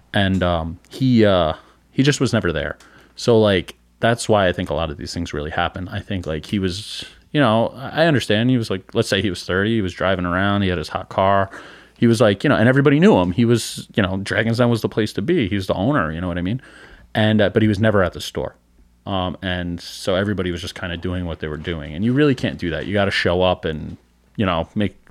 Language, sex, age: English, male, 30-49